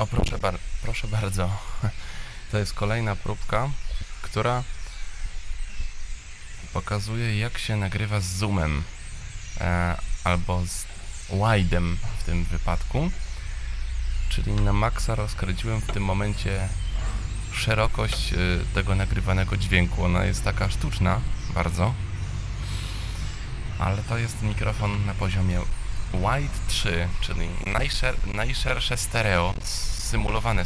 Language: Polish